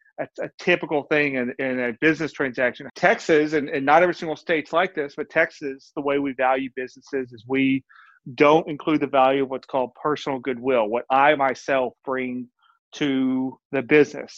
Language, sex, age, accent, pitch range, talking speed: English, male, 40-59, American, 130-155 Hz, 175 wpm